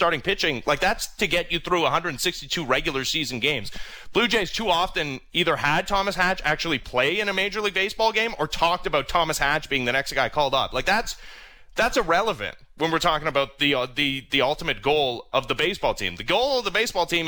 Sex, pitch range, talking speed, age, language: male, 145-195 Hz, 220 wpm, 30-49, English